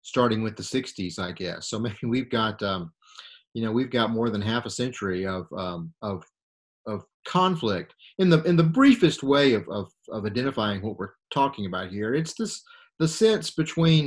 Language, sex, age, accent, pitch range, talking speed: English, male, 40-59, American, 105-135 Hz, 190 wpm